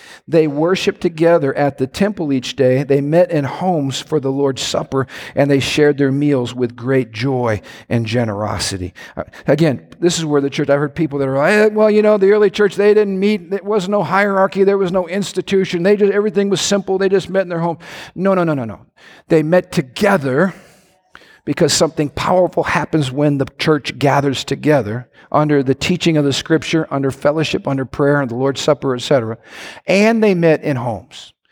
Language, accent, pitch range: English, American, 140-195 Hz